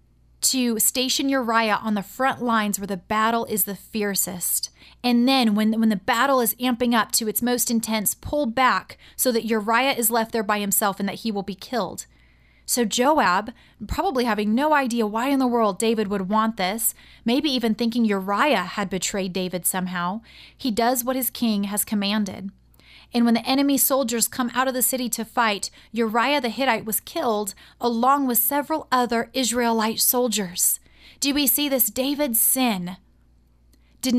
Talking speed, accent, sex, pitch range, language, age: 175 wpm, American, female, 210-255 Hz, English, 30-49